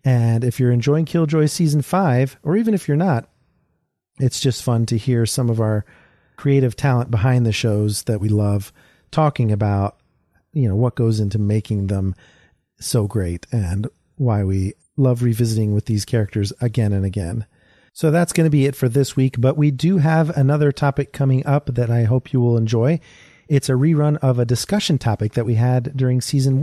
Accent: American